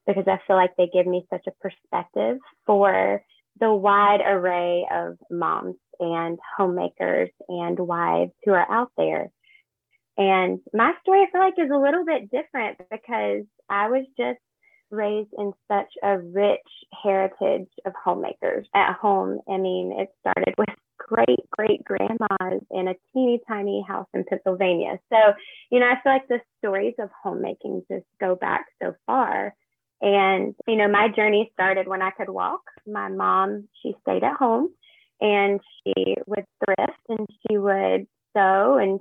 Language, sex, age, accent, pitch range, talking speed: English, female, 20-39, American, 180-215 Hz, 160 wpm